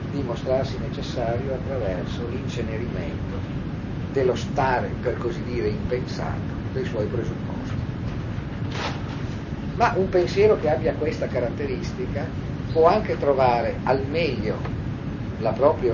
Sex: male